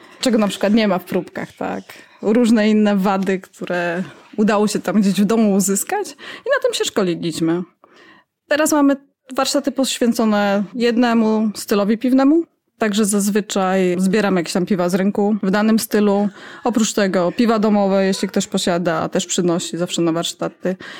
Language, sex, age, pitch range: Polish, female, 20-39, 180-225 Hz